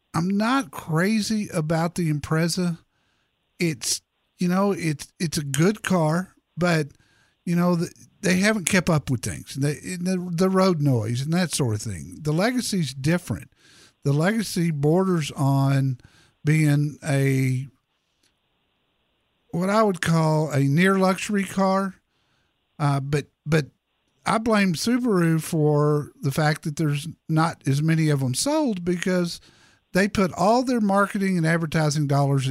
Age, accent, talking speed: 50-69, American, 145 wpm